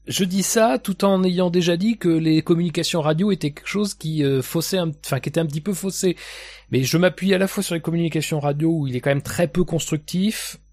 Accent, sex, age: French, male, 30-49